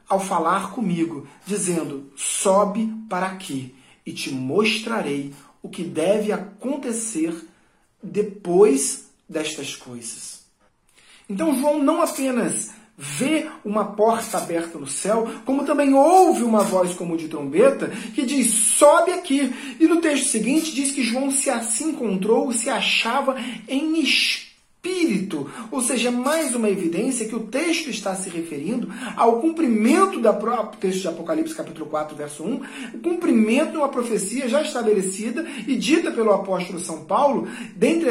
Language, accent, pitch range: Portuguese, Brazilian, 190-270 Hz